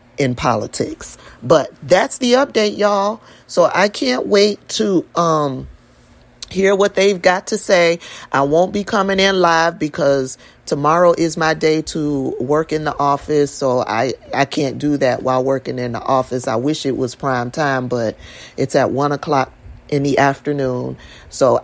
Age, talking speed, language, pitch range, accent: 40-59, 170 wpm, English, 130-170 Hz, American